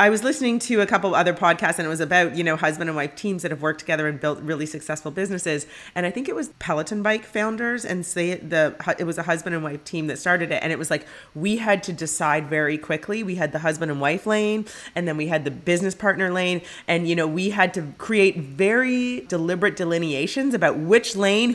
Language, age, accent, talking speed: English, 30-49, American, 240 wpm